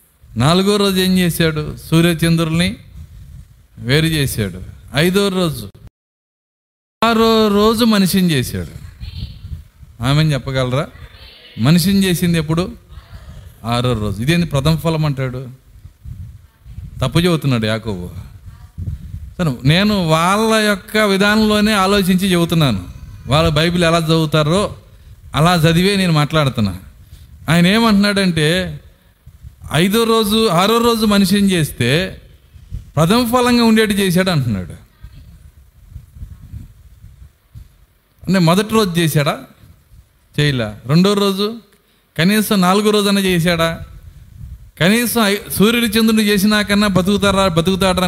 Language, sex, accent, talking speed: Telugu, male, native, 90 wpm